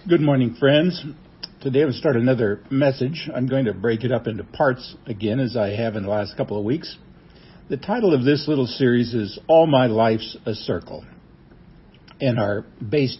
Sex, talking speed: male, 195 wpm